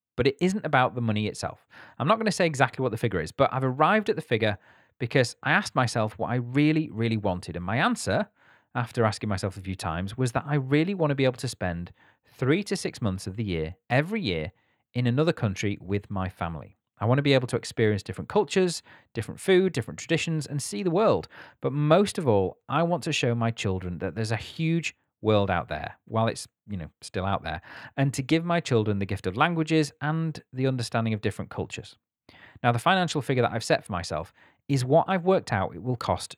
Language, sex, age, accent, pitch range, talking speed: English, male, 30-49, British, 100-150 Hz, 230 wpm